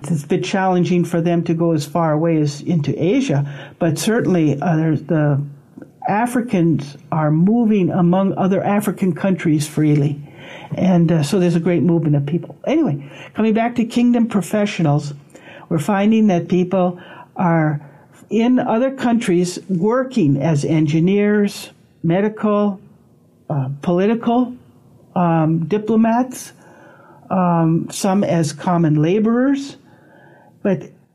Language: English